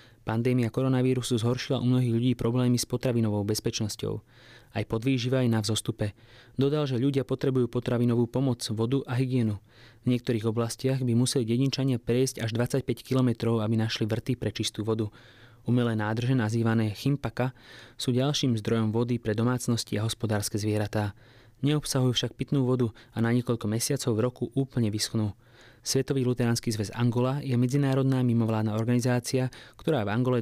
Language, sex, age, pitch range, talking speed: English, male, 20-39, 115-130 Hz, 150 wpm